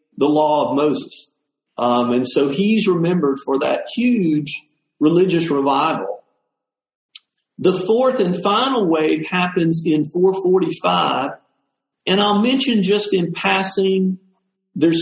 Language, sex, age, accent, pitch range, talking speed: English, male, 50-69, American, 145-190 Hz, 115 wpm